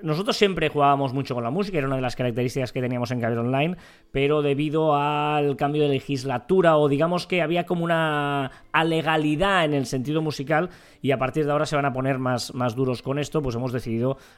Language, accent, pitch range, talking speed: Spanish, Spanish, 125-155 Hz, 215 wpm